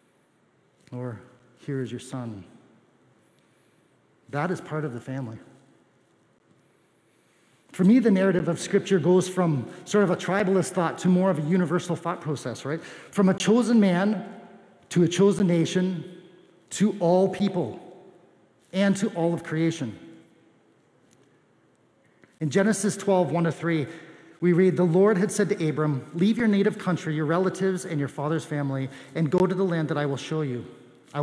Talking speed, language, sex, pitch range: 160 wpm, English, male, 145-185 Hz